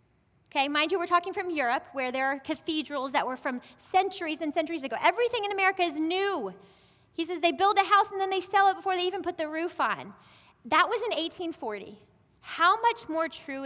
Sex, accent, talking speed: female, American, 215 wpm